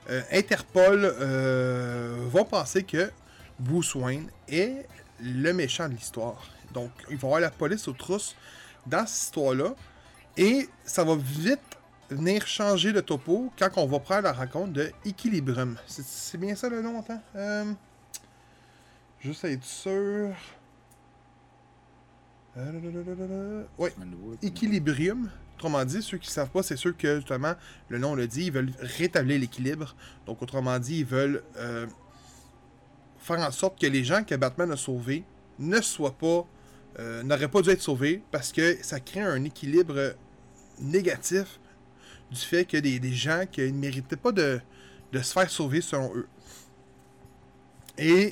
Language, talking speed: French, 155 wpm